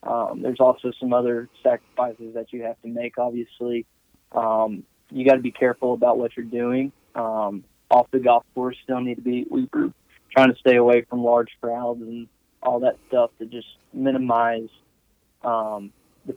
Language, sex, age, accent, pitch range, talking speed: English, male, 20-39, American, 115-125 Hz, 170 wpm